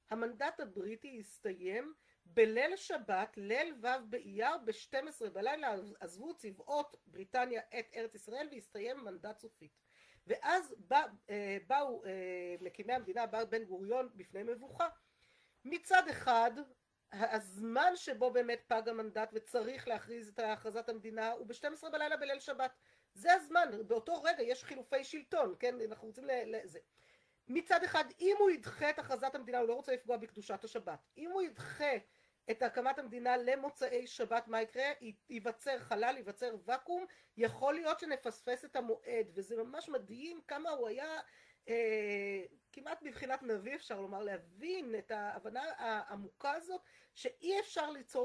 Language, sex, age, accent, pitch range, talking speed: Hebrew, female, 40-59, native, 220-305 Hz, 135 wpm